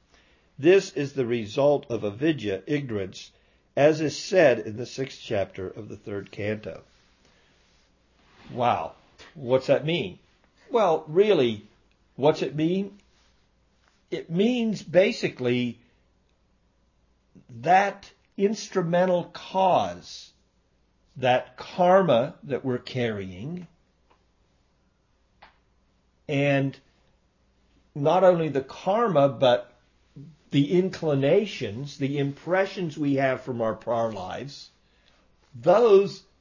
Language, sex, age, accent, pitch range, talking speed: English, male, 50-69, American, 125-185 Hz, 90 wpm